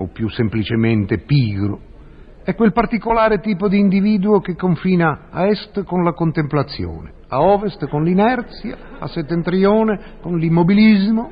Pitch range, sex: 130-190 Hz, male